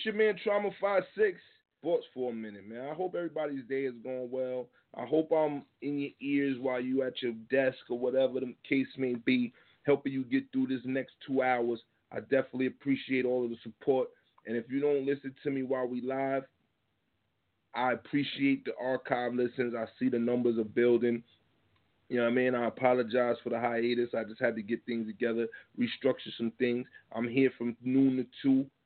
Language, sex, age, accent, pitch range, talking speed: English, male, 30-49, American, 120-135 Hz, 200 wpm